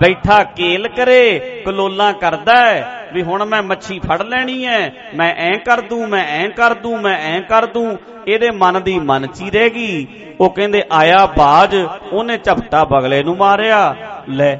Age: 50-69